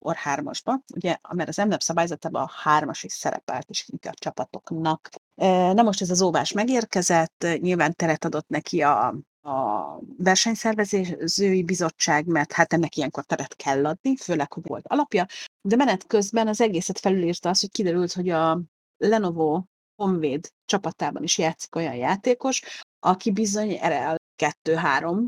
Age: 30-49